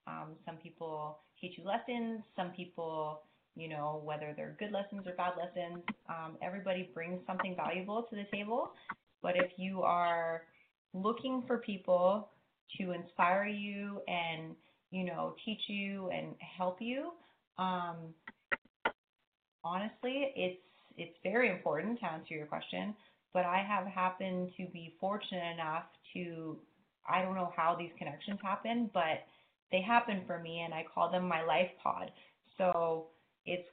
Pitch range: 160-195 Hz